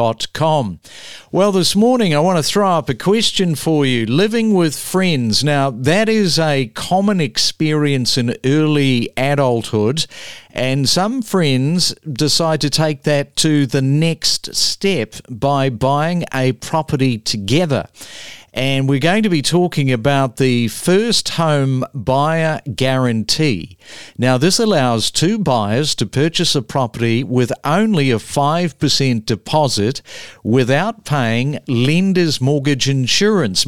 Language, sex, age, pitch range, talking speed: English, male, 50-69, 125-165 Hz, 125 wpm